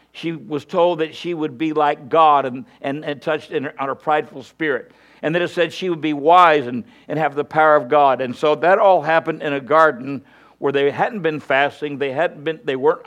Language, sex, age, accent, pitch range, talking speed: English, male, 60-79, American, 140-165 Hz, 240 wpm